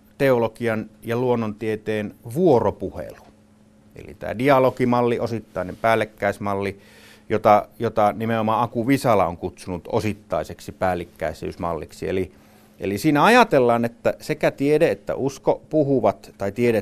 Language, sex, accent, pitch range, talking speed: Finnish, male, native, 105-130 Hz, 105 wpm